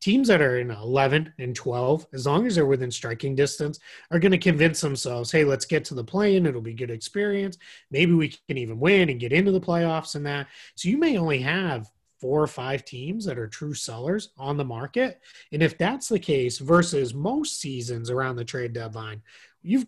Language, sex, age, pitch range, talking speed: English, male, 30-49, 130-175 Hz, 210 wpm